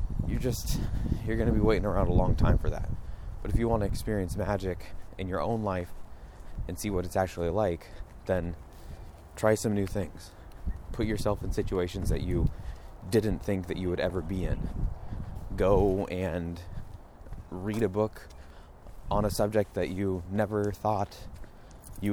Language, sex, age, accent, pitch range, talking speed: English, male, 20-39, American, 85-105 Hz, 170 wpm